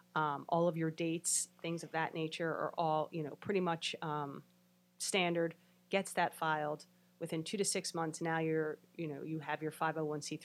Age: 30-49